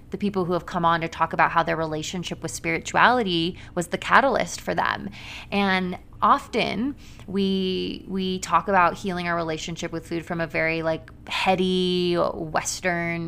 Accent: American